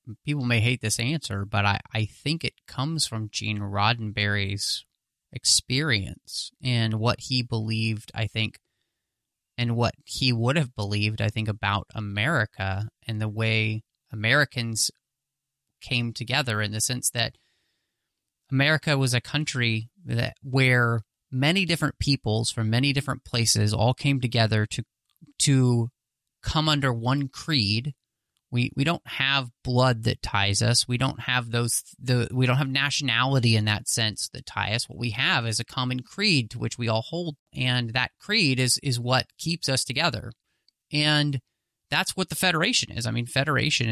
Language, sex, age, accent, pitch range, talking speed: English, male, 30-49, American, 115-140 Hz, 160 wpm